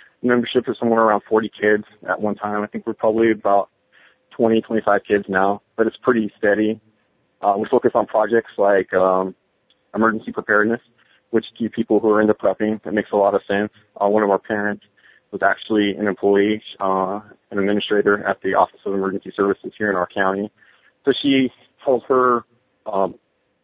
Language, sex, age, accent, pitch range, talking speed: English, male, 20-39, American, 100-110 Hz, 180 wpm